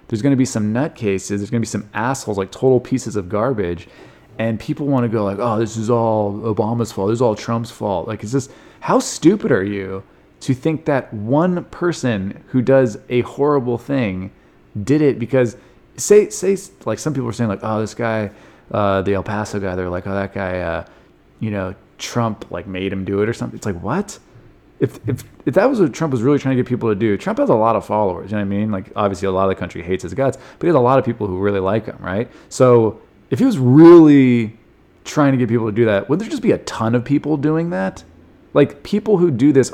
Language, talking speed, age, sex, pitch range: English, 250 wpm, 20-39, male, 100-130 Hz